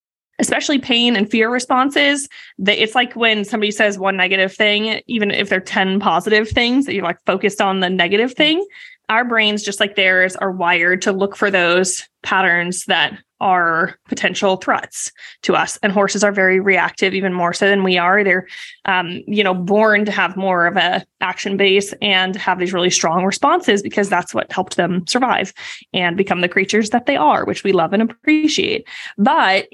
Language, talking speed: English, 190 wpm